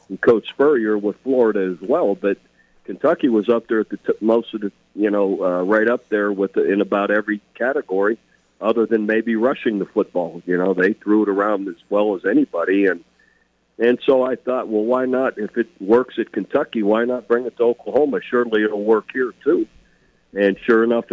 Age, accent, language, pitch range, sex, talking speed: 50-69, American, English, 95-115 Hz, male, 205 wpm